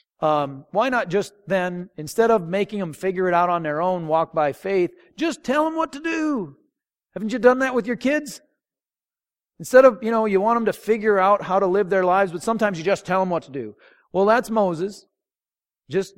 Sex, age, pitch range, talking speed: male, 40-59, 145-200 Hz, 220 wpm